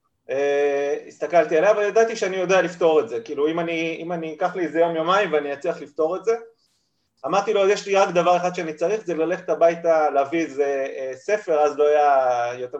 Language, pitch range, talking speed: Hebrew, 145-200 Hz, 195 wpm